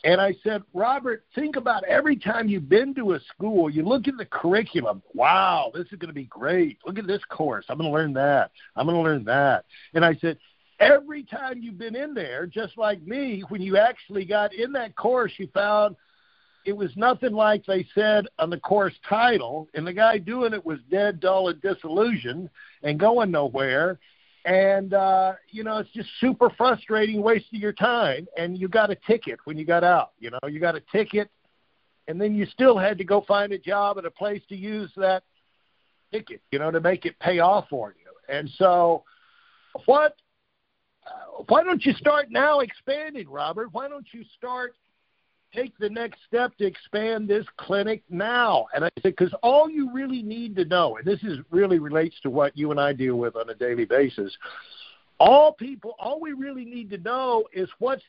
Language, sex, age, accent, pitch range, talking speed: English, male, 50-69, American, 180-240 Hz, 200 wpm